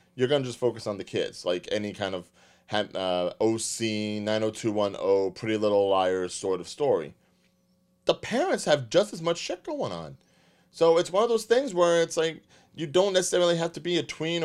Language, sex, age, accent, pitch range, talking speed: English, male, 30-49, American, 95-135 Hz, 195 wpm